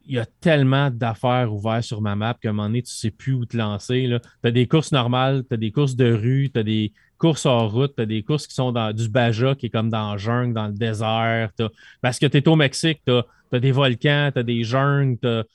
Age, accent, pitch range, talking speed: 30-49, Canadian, 115-135 Hz, 270 wpm